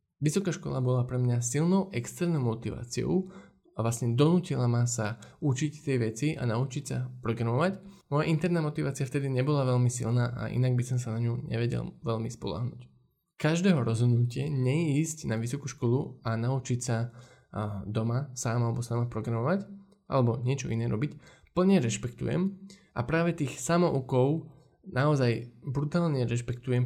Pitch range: 120-145 Hz